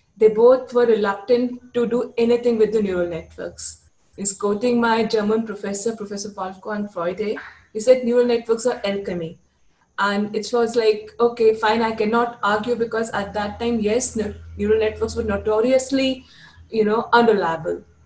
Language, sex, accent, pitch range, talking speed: English, female, Indian, 205-255 Hz, 155 wpm